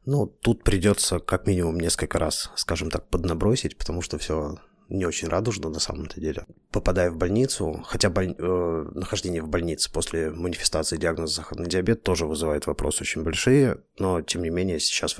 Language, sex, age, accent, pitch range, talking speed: Russian, male, 20-39, native, 80-95 Hz, 175 wpm